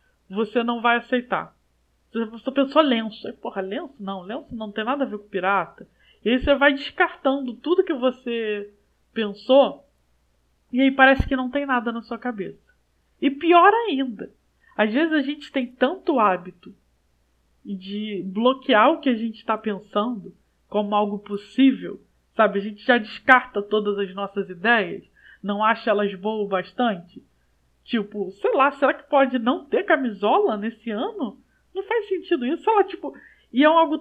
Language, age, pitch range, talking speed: Portuguese, 20-39, 205-275 Hz, 170 wpm